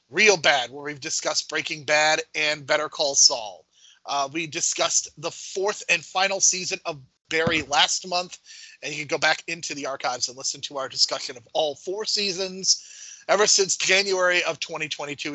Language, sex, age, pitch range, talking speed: English, male, 30-49, 150-185 Hz, 175 wpm